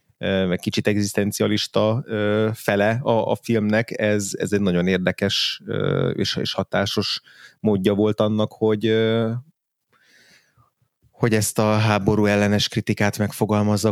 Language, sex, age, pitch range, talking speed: Hungarian, male, 30-49, 100-115 Hz, 110 wpm